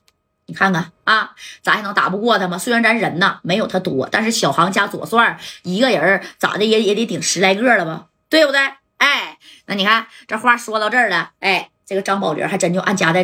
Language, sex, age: Chinese, female, 20-39